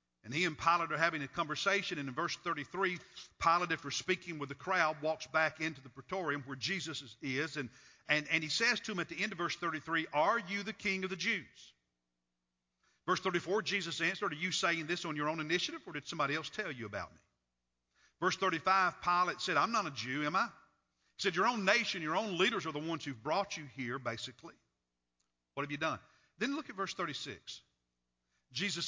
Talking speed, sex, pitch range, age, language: 215 wpm, male, 130-190 Hz, 50-69, English